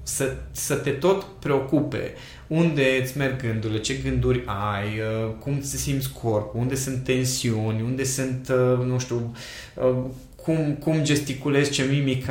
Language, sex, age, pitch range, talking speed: Romanian, male, 20-39, 125-170 Hz, 135 wpm